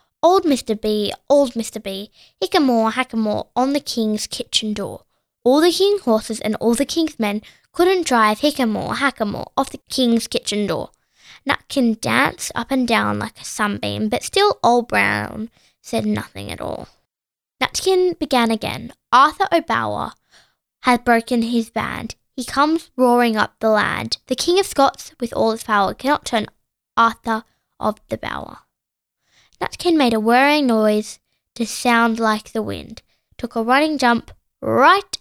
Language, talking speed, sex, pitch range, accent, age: English, 155 wpm, female, 220-295 Hz, British, 10-29